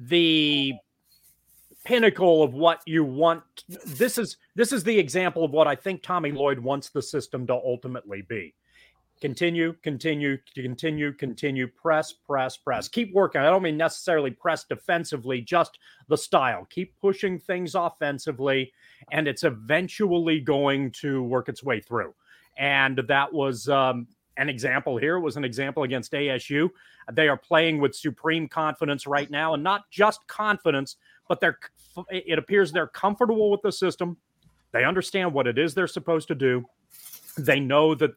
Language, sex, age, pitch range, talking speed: English, male, 40-59, 140-170 Hz, 155 wpm